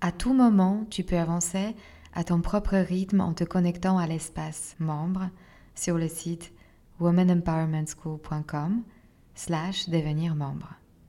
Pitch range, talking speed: 165-190 Hz, 125 wpm